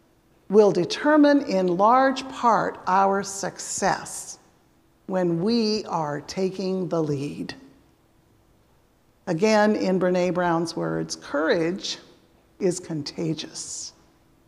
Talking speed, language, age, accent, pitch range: 85 wpm, English, 50-69, American, 185-260 Hz